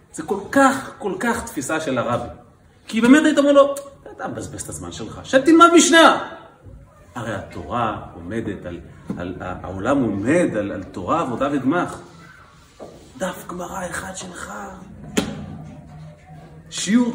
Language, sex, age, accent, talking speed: Hebrew, male, 40-59, native, 135 wpm